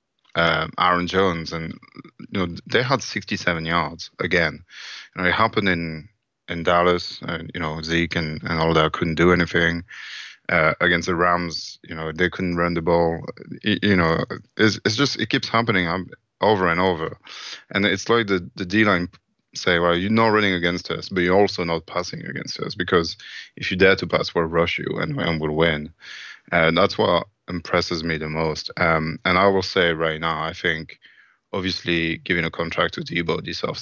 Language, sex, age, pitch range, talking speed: English, male, 20-39, 80-95 Hz, 195 wpm